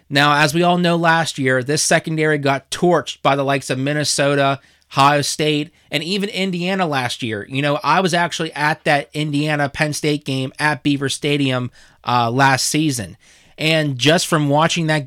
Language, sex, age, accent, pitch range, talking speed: English, male, 30-49, American, 135-160 Hz, 175 wpm